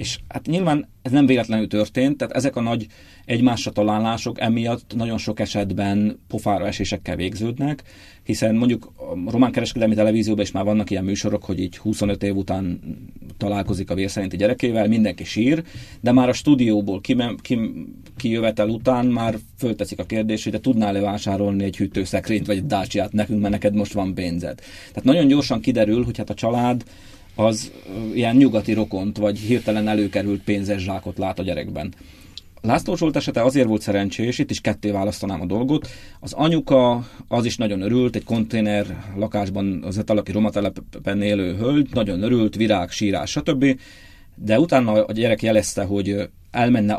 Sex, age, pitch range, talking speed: male, 30-49, 100-115 Hz, 160 wpm